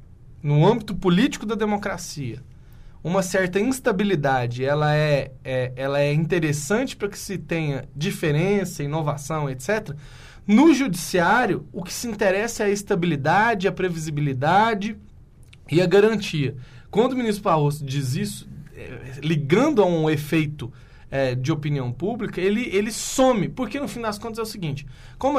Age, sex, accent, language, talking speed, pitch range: 20-39, male, Brazilian, Portuguese, 135 wpm, 140-210 Hz